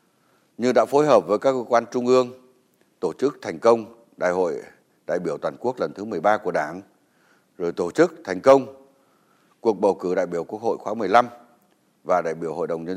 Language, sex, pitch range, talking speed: Vietnamese, male, 100-130 Hz, 210 wpm